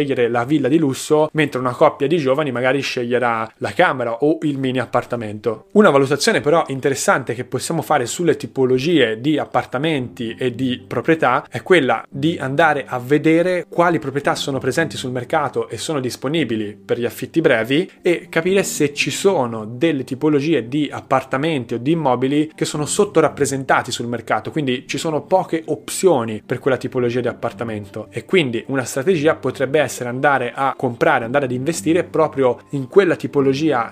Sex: male